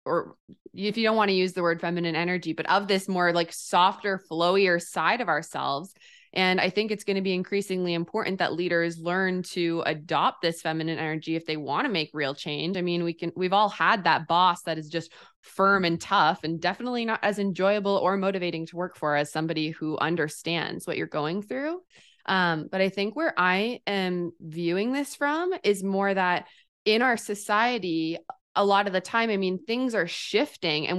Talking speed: 205 wpm